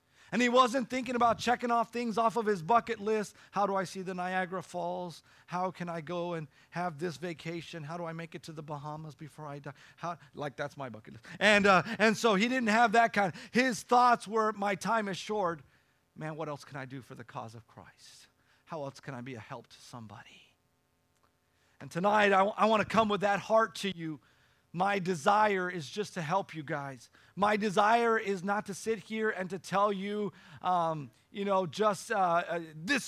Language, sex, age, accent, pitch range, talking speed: English, male, 40-59, American, 155-205 Hz, 220 wpm